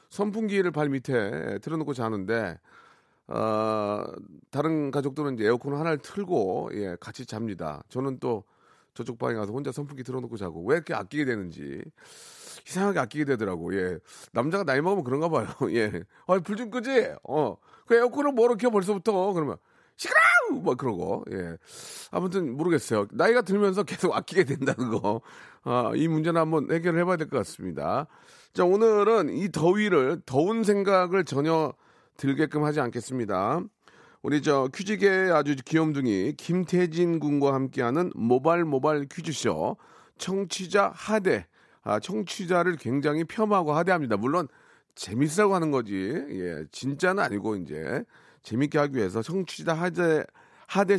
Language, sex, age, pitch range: Korean, male, 40-59, 125-195 Hz